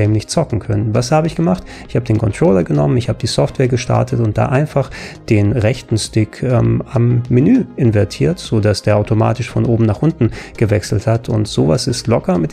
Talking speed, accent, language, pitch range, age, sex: 200 wpm, German, German, 105-125 Hz, 30-49, male